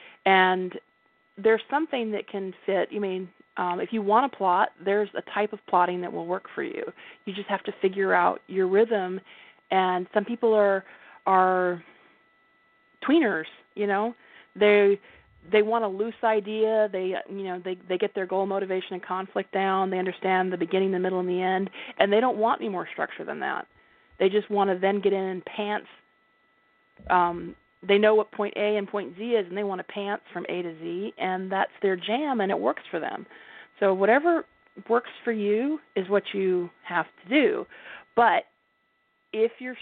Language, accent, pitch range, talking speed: English, American, 185-225 Hz, 195 wpm